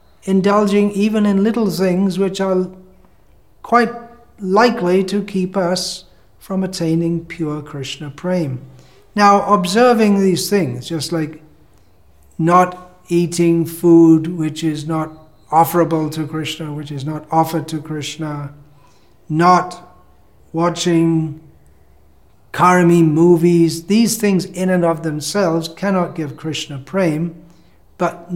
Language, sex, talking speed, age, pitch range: English, male, 110 wpm, 60-79, 145-185 Hz